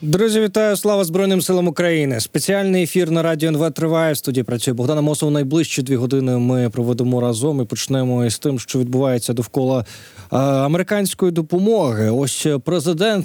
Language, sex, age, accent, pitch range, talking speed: Ukrainian, male, 20-39, native, 125-165 Hz, 150 wpm